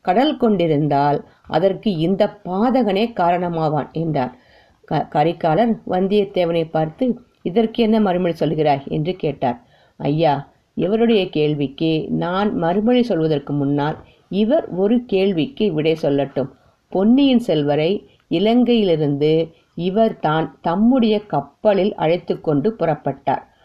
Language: Tamil